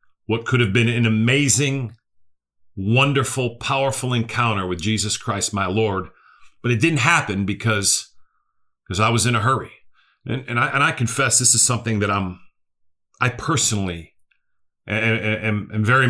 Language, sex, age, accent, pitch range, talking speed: English, male, 40-59, American, 90-120 Hz, 155 wpm